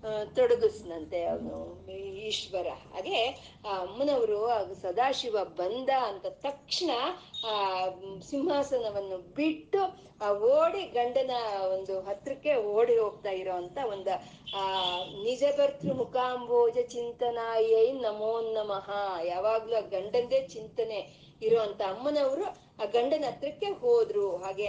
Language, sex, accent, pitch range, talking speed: Kannada, female, native, 200-320 Hz, 95 wpm